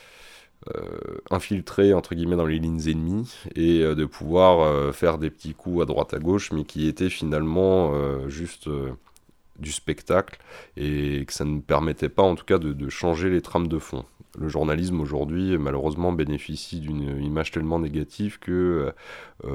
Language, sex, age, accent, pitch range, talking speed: French, male, 20-39, French, 75-90 Hz, 175 wpm